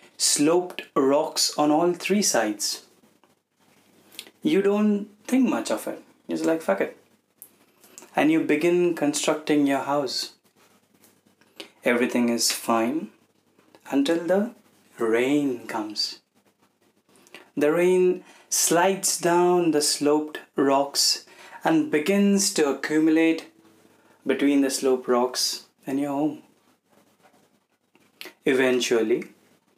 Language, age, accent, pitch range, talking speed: Hindi, 30-49, native, 130-180 Hz, 95 wpm